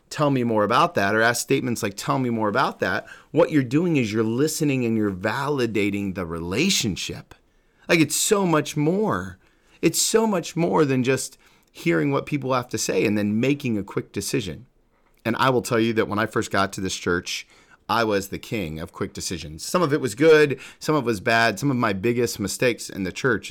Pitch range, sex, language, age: 100-130 Hz, male, English, 30-49